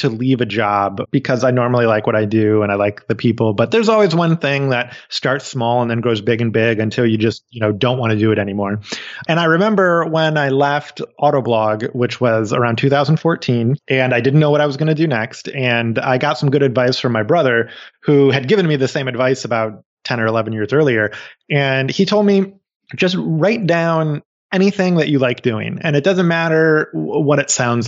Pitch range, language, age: 115-150 Hz, English, 20-39